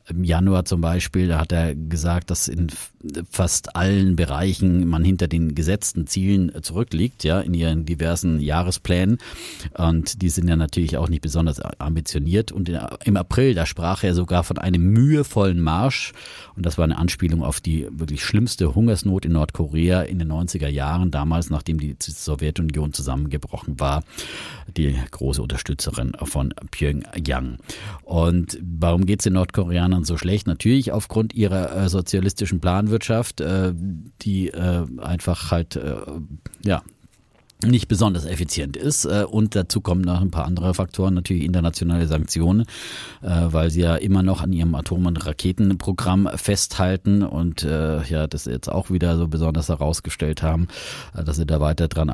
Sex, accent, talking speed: male, German, 150 wpm